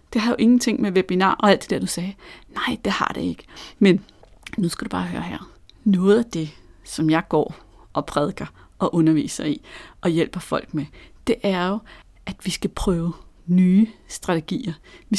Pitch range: 165-230 Hz